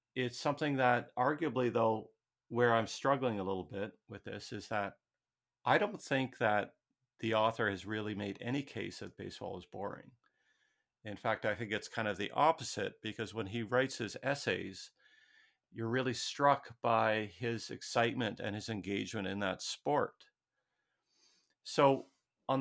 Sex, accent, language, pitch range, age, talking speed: male, American, English, 105-125 Hz, 50-69, 155 wpm